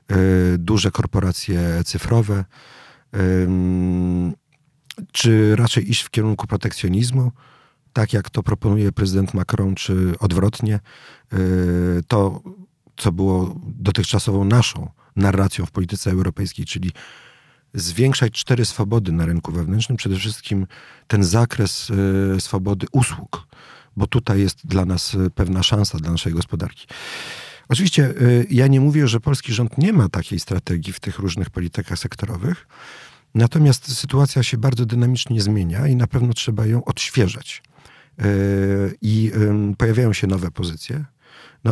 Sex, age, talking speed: male, 40-59, 120 wpm